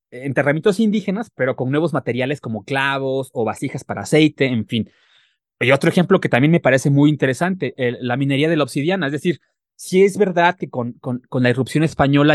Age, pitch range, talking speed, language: 30-49, 135-175 Hz, 205 wpm, Spanish